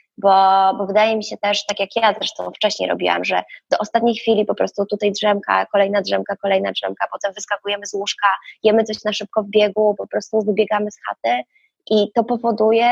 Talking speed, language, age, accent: 195 wpm, Polish, 20-39, native